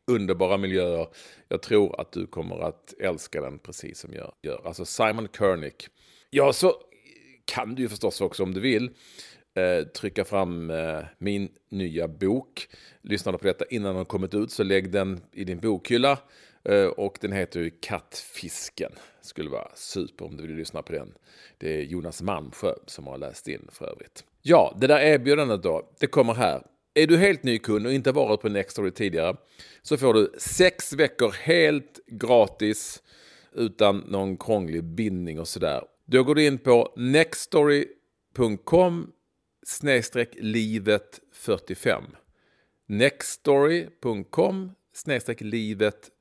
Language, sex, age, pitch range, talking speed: Swedish, male, 40-59, 95-145 Hz, 145 wpm